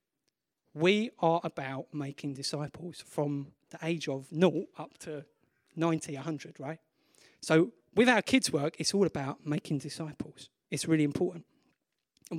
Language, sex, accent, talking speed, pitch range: English, male, British, 140 wpm, 155-200 Hz